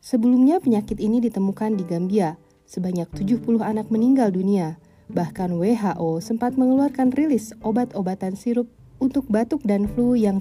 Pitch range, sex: 190-245 Hz, female